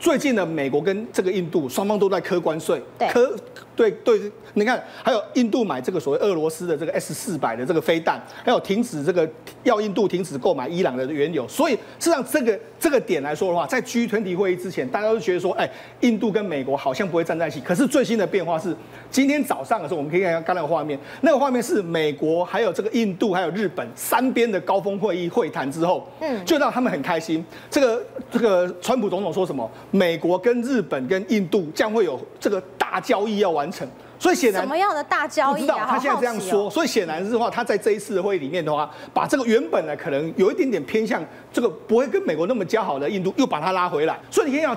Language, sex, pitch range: Chinese, male, 180-280 Hz